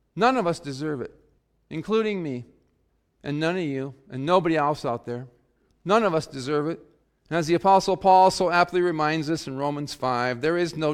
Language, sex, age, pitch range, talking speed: English, male, 40-59, 125-175 Hz, 200 wpm